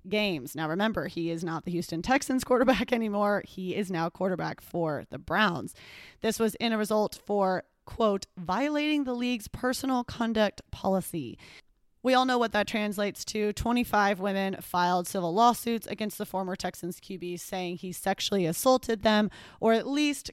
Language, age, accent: English, 30-49, American